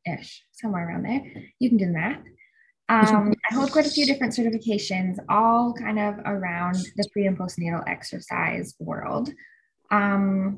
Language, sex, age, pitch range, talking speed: English, female, 10-29, 195-235 Hz, 155 wpm